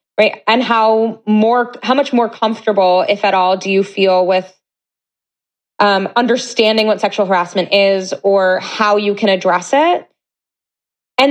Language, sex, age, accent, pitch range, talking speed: English, female, 20-39, American, 195-235 Hz, 150 wpm